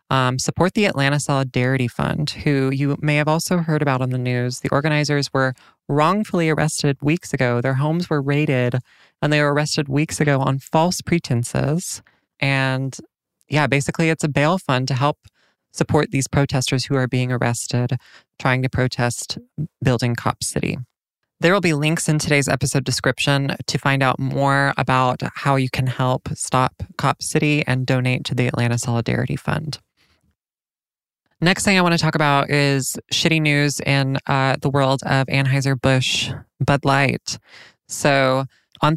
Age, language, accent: 20-39, English, American